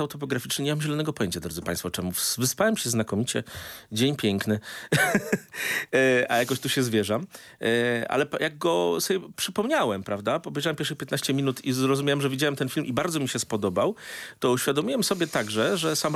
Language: Polish